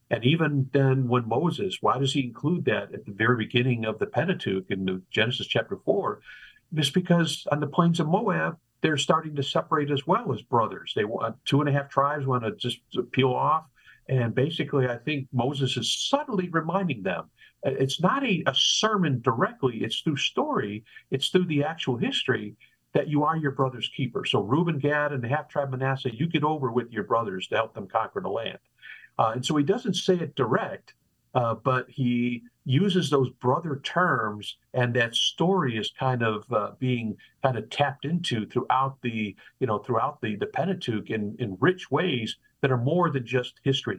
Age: 50-69